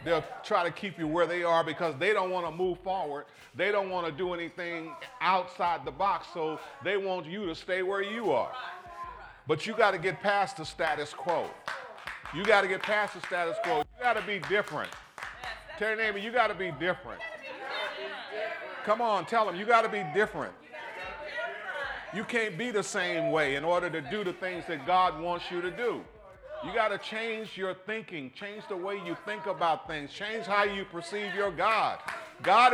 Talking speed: 200 wpm